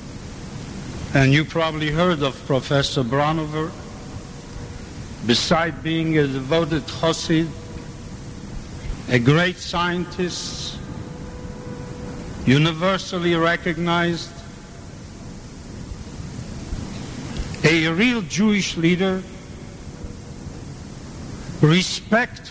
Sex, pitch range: male, 140-185 Hz